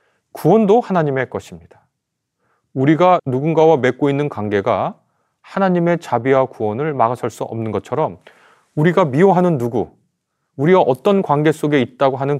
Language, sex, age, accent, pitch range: Korean, male, 30-49, native, 115-160 Hz